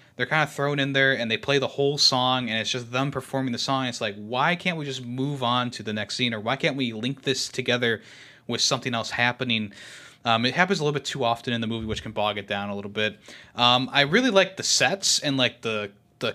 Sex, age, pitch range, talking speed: male, 20-39, 115-140 Hz, 260 wpm